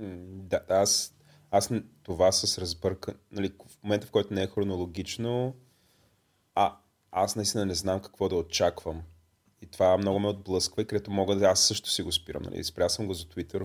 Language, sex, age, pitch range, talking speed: Bulgarian, male, 30-49, 95-115 Hz, 185 wpm